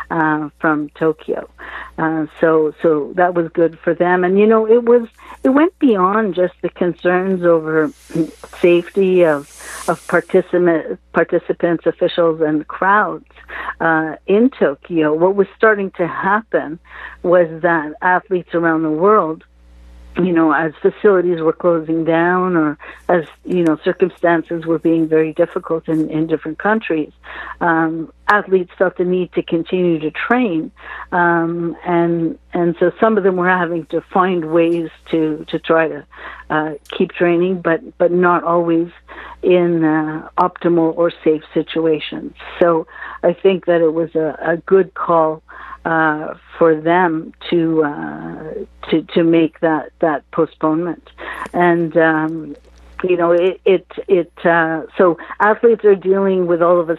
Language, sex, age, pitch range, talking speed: English, female, 60-79, 160-180 Hz, 145 wpm